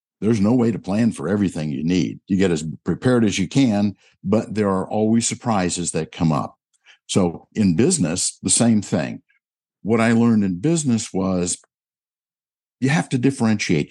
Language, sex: English, male